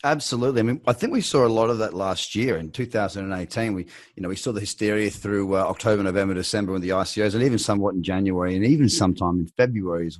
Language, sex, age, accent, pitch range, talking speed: English, male, 30-49, Australian, 95-120 Hz, 240 wpm